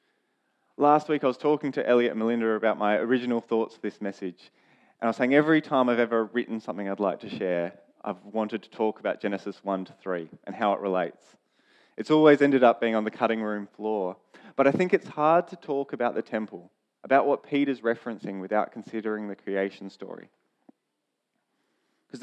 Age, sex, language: 20-39, male, English